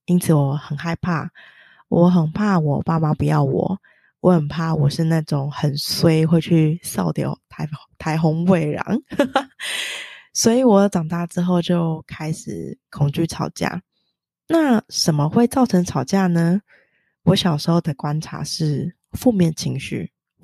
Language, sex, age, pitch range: Chinese, female, 20-39, 155-190 Hz